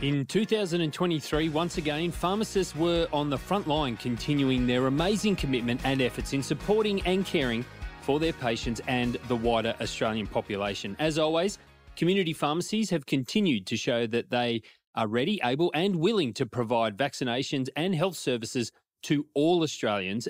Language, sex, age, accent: English, male, 30-49, Australian